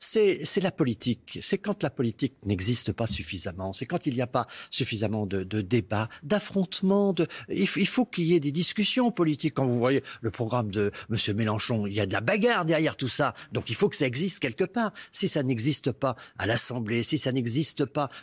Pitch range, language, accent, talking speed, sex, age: 110-170 Hz, French, French, 225 wpm, male, 50-69